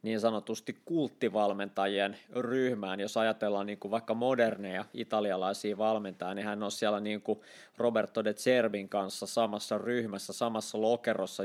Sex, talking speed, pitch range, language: male, 130 wpm, 105-120 Hz, Finnish